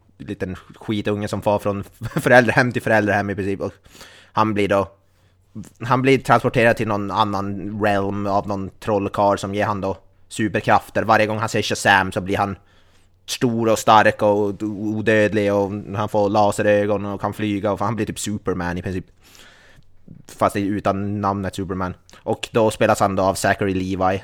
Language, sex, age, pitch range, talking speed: Swedish, male, 20-39, 90-105 Hz, 175 wpm